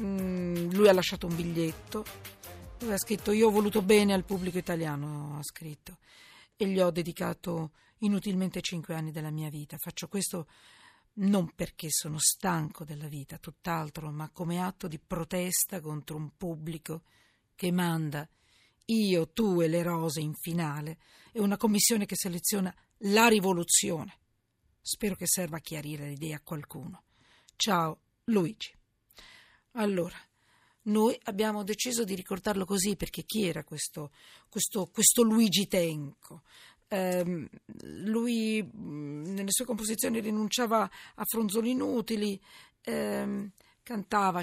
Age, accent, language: 50-69, native, Italian